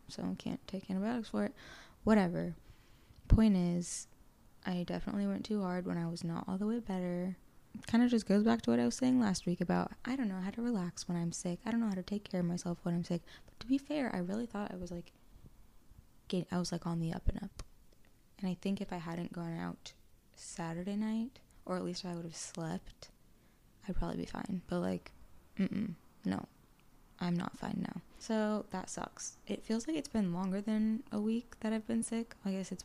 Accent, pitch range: American, 175-220 Hz